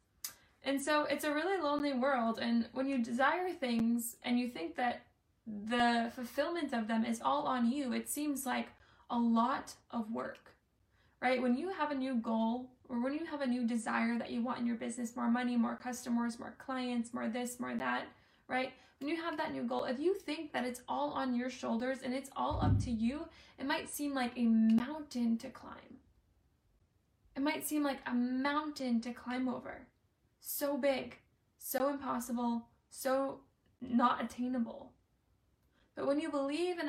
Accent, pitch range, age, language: American, 235-275 Hz, 10-29, English